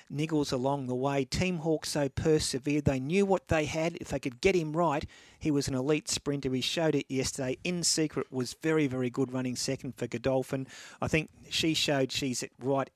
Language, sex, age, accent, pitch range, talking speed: English, male, 40-59, Australian, 130-155 Hz, 205 wpm